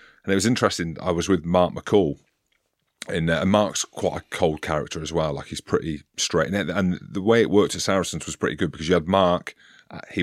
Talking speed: 240 wpm